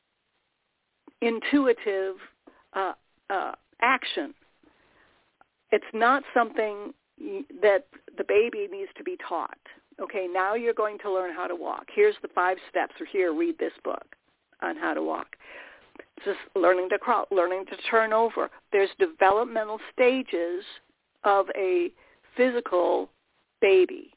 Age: 50-69